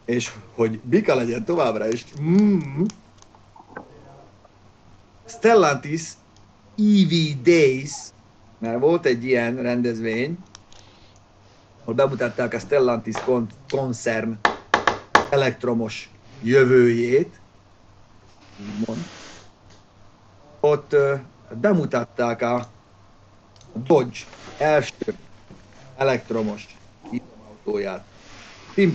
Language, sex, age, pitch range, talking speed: Hungarian, male, 50-69, 110-145 Hz, 65 wpm